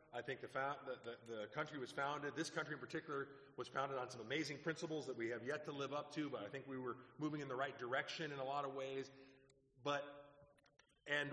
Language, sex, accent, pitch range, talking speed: English, male, American, 125-160 Hz, 240 wpm